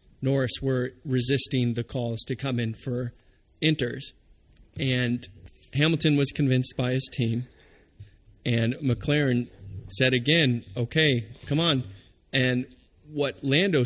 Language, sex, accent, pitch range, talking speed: English, male, American, 110-135 Hz, 115 wpm